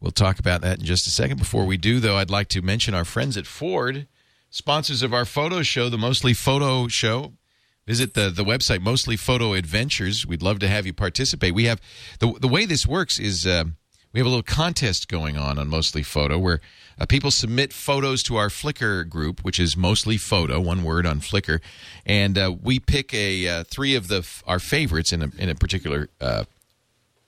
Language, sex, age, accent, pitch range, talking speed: English, male, 40-59, American, 85-120 Hz, 210 wpm